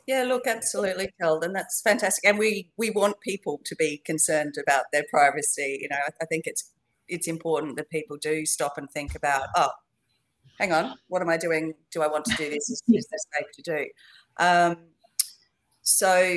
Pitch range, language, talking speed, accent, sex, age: 155-205 Hz, English, 195 wpm, Australian, female, 40-59